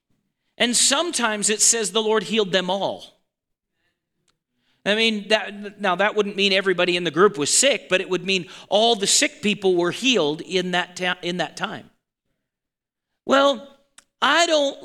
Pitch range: 200-260 Hz